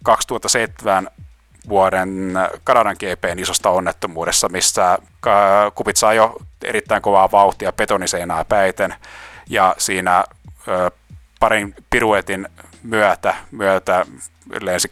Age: 30-49